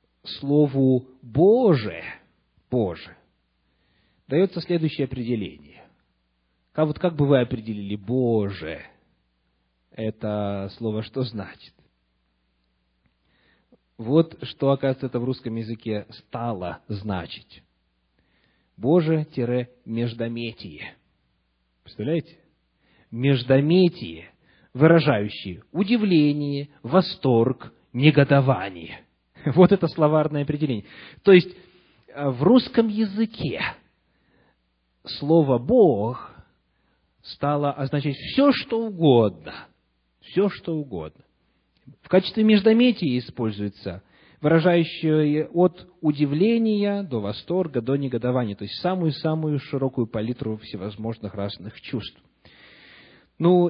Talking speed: 80 wpm